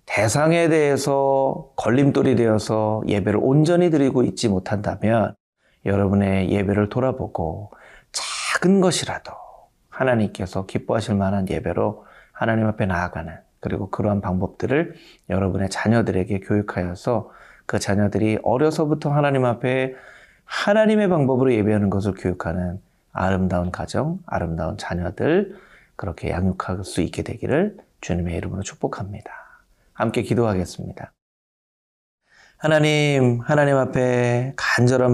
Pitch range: 100-130 Hz